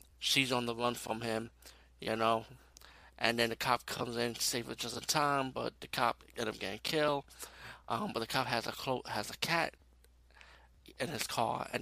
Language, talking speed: English, 215 wpm